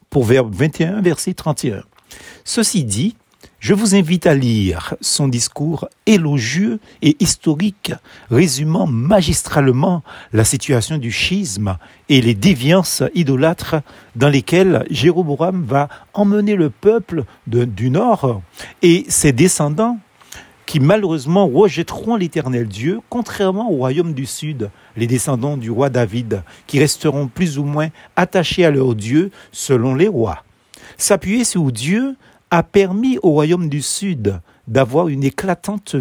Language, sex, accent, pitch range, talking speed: French, male, French, 125-180 Hz, 130 wpm